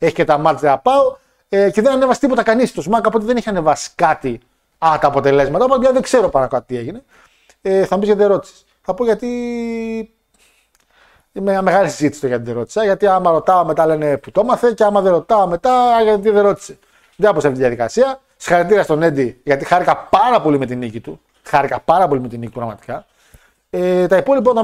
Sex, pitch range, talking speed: male, 145-220 Hz, 210 wpm